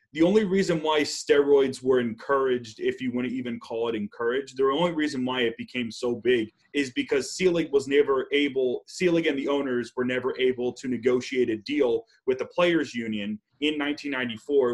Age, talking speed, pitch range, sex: 30-49, 185 wpm, 120-155 Hz, male